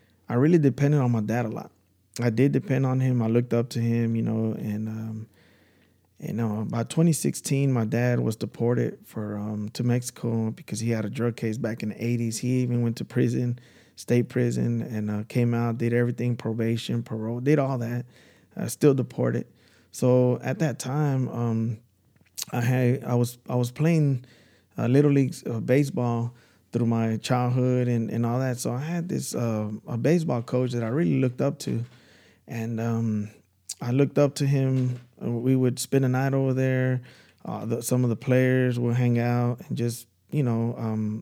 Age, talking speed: 20-39, 190 wpm